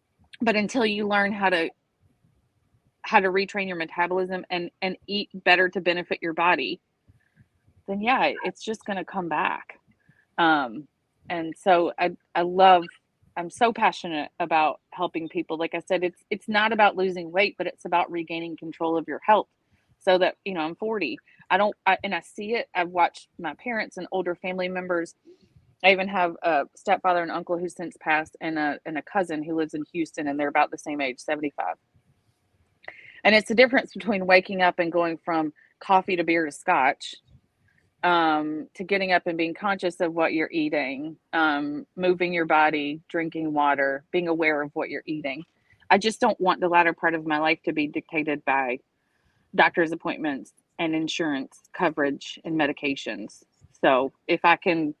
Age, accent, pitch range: 30-49, American, 160-190 Hz